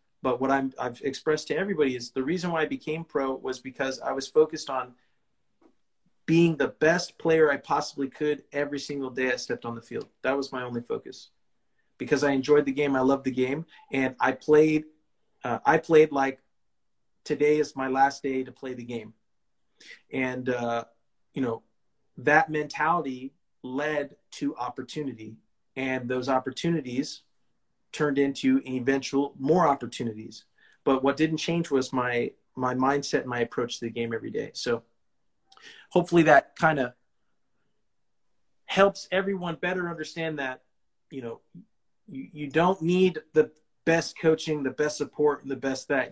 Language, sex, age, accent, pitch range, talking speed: English, male, 30-49, American, 130-155 Hz, 160 wpm